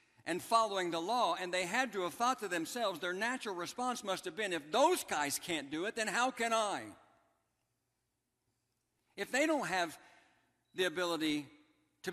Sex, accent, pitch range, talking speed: male, American, 155-225 Hz, 175 wpm